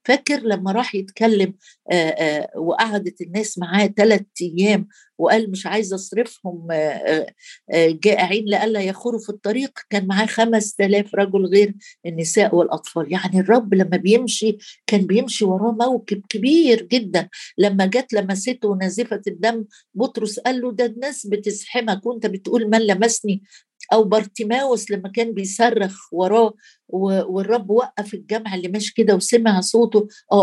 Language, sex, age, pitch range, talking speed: Arabic, female, 50-69, 195-230 Hz, 135 wpm